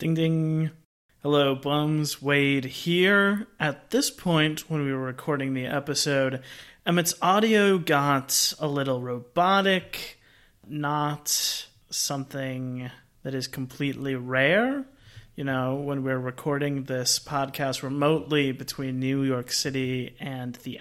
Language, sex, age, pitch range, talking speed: English, male, 30-49, 130-160 Hz, 120 wpm